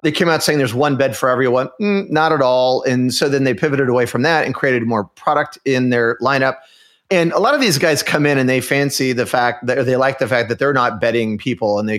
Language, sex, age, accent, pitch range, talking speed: English, male, 30-49, American, 115-145 Hz, 265 wpm